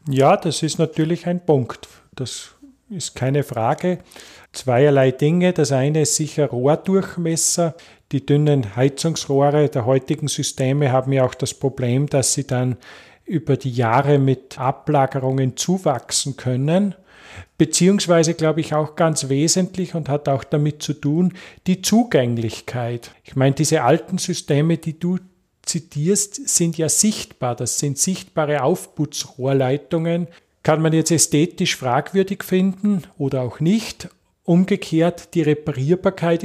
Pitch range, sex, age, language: 135-165 Hz, male, 40-59, German